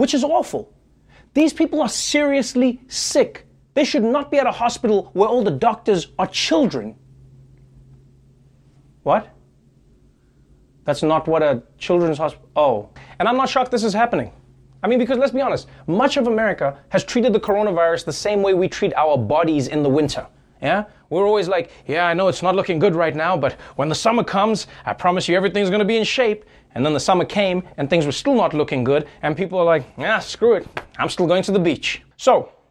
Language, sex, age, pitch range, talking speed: English, male, 30-49, 140-215 Hz, 205 wpm